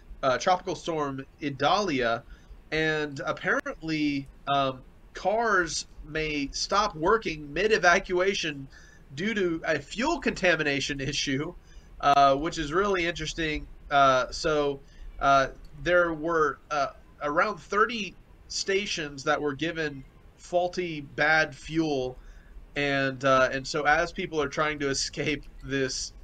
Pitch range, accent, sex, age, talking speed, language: 130-155 Hz, American, male, 30-49, 115 wpm, English